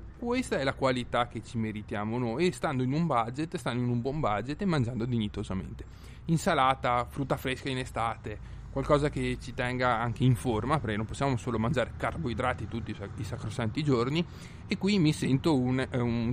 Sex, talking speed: male, 185 wpm